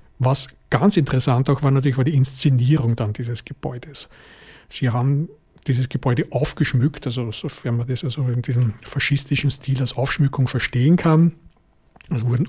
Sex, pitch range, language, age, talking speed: male, 125-150 Hz, German, 50-69, 150 wpm